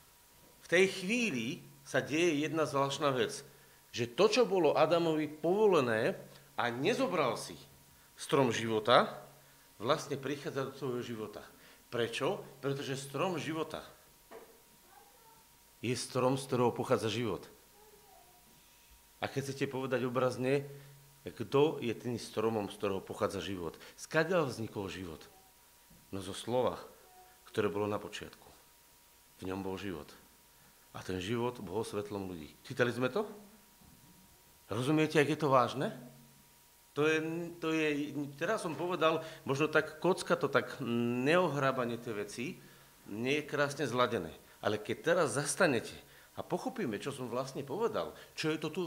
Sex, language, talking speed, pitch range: male, Slovak, 130 wpm, 120-160 Hz